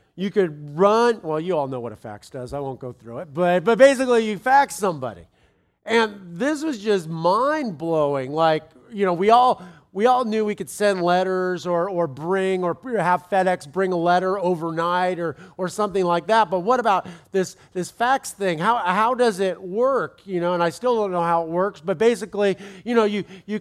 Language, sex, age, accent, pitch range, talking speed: English, male, 40-59, American, 170-215 Hz, 210 wpm